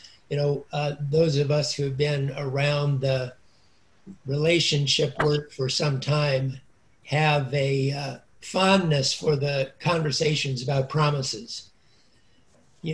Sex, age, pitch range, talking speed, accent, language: male, 60-79, 135-160 Hz, 115 wpm, American, English